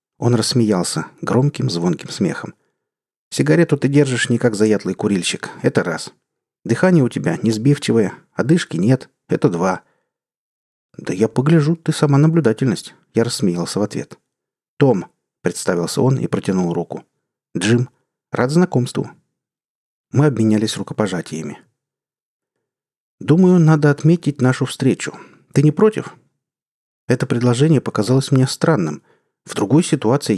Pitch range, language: 110-155 Hz, Russian